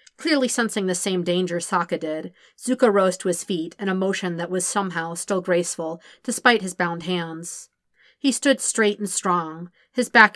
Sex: female